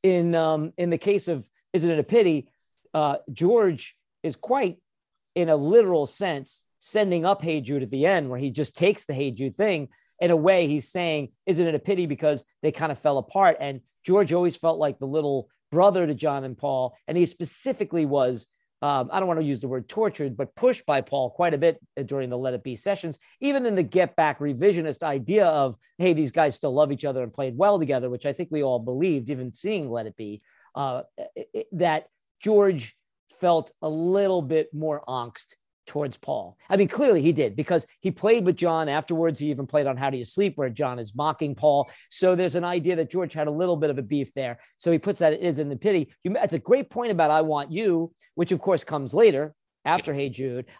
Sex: male